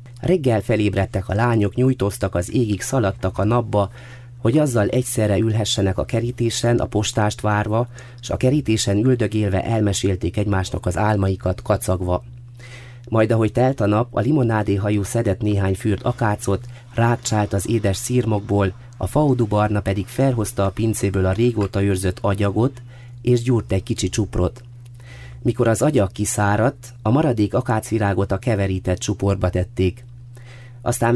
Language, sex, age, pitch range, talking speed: Hungarian, male, 30-49, 100-120 Hz, 135 wpm